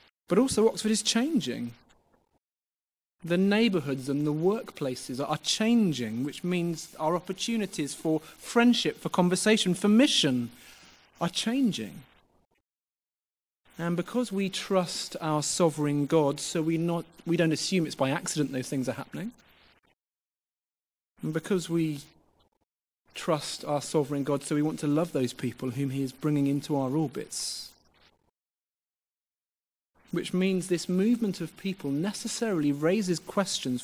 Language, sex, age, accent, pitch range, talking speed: English, male, 30-49, British, 140-185 Hz, 130 wpm